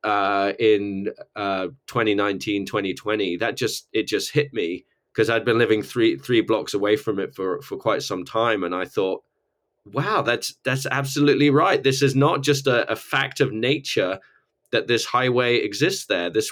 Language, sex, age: English, male, 20-39